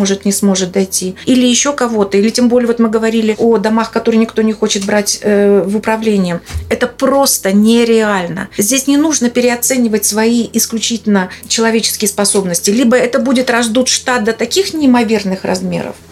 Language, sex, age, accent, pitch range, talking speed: Russian, female, 30-49, native, 210-260 Hz, 155 wpm